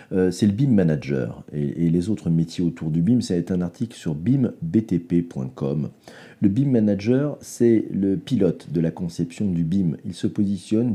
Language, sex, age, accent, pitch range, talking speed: French, male, 40-59, French, 85-120 Hz, 175 wpm